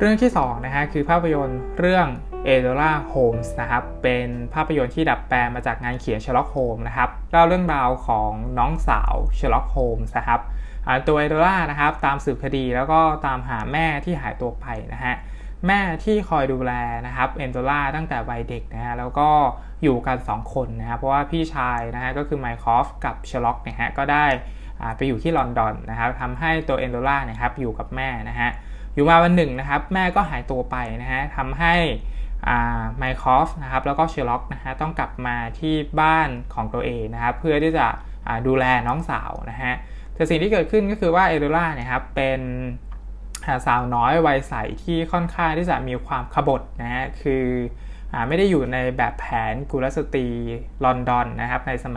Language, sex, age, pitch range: Thai, male, 20-39, 120-155 Hz